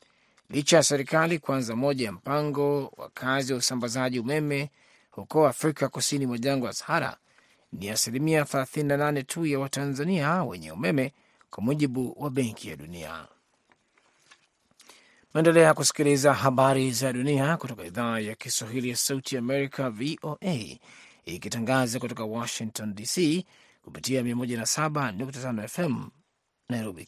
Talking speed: 110 wpm